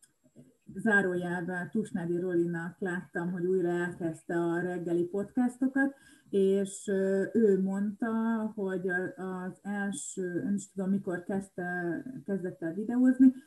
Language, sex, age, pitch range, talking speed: Hungarian, female, 30-49, 180-220 Hz, 100 wpm